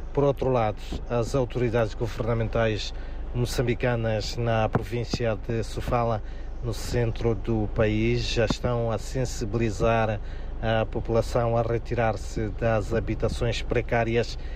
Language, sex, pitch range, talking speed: Portuguese, male, 110-125 Hz, 105 wpm